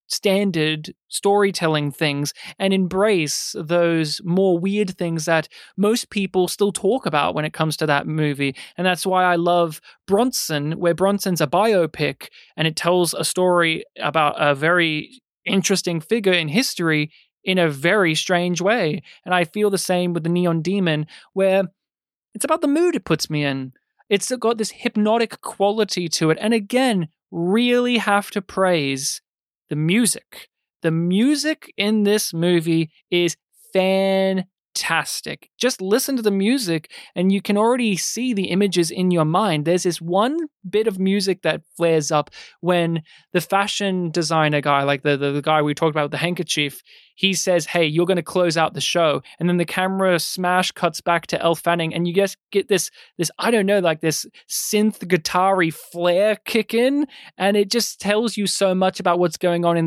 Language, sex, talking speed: English, male, 175 wpm